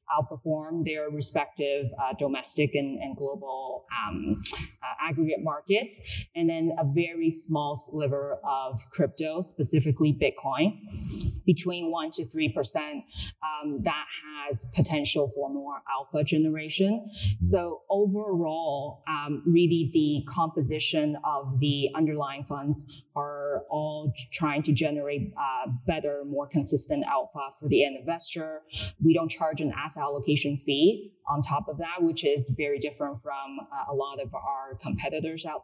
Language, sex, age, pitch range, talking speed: English, female, 20-39, 140-165 Hz, 135 wpm